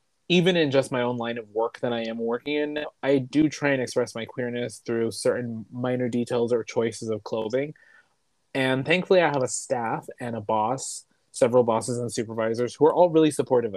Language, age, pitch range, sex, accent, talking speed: English, 20-39, 115-140 Hz, male, American, 200 wpm